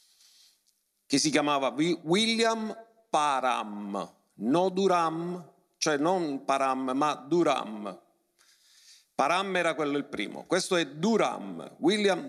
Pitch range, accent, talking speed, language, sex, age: 135-195 Hz, native, 105 wpm, Italian, male, 50-69